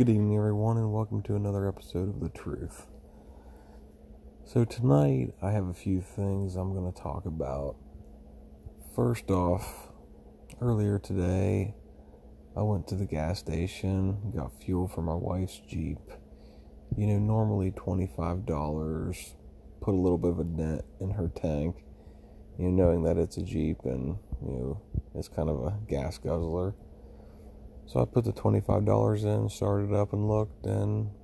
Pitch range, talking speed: 75-100 Hz, 155 wpm